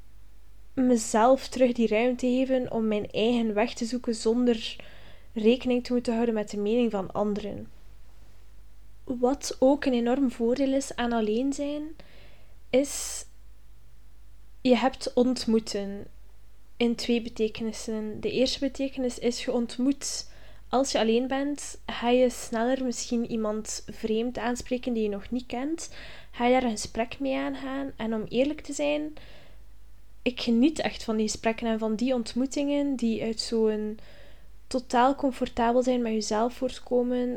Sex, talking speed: female, 145 wpm